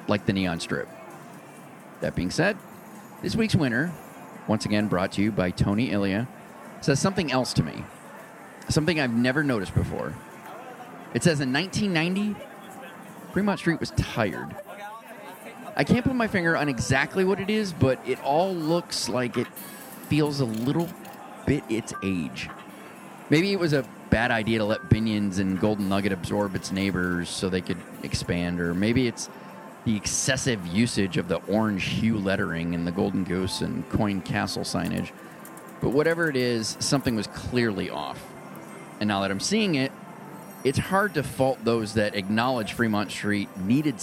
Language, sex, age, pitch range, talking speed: English, male, 30-49, 100-160 Hz, 165 wpm